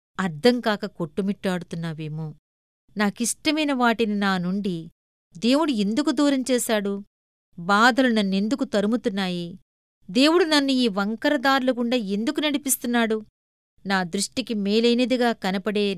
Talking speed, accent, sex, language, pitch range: 90 wpm, native, female, Telugu, 190-240 Hz